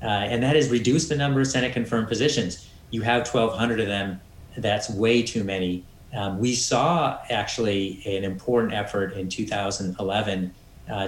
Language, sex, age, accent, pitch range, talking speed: English, male, 30-49, American, 95-120 Hz, 160 wpm